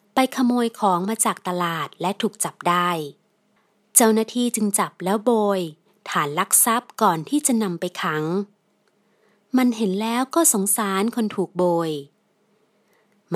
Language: Thai